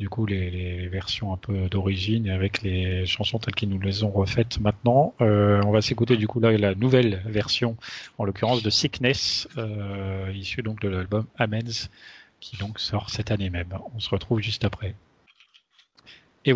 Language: French